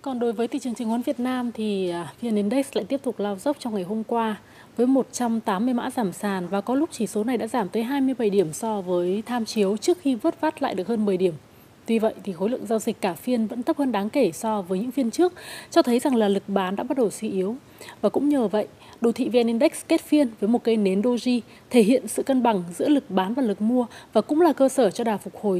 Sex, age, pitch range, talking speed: female, 20-39, 205-270 Hz, 270 wpm